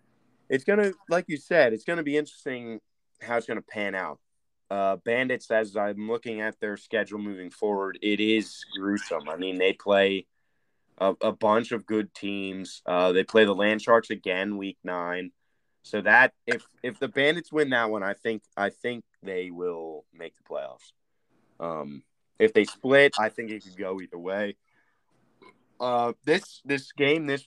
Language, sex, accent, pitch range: English, male, American, 95-115 Hz